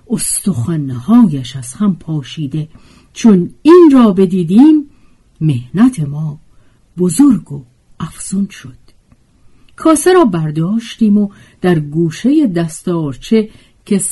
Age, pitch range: 50-69, 150-225 Hz